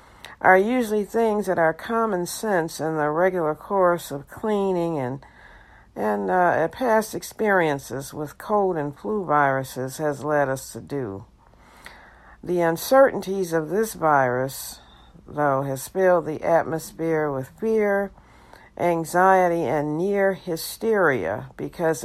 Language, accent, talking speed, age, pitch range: English, American, 120 wpm, 60-79, 145-190 Hz